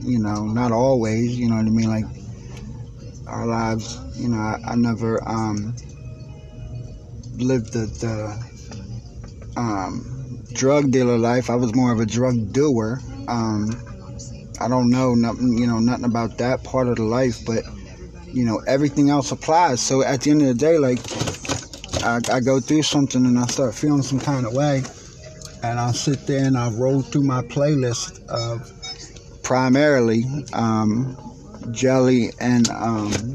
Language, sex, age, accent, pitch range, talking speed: English, male, 30-49, American, 115-140 Hz, 160 wpm